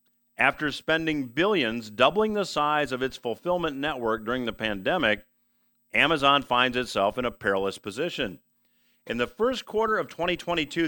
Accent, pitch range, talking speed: American, 115-175 Hz, 145 wpm